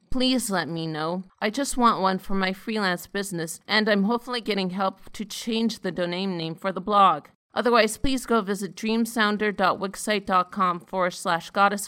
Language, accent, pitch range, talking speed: English, American, 180-215 Hz, 165 wpm